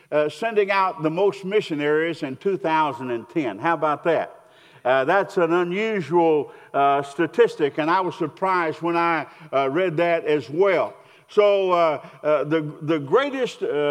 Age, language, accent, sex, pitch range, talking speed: 50-69, English, American, male, 150-200 Hz, 145 wpm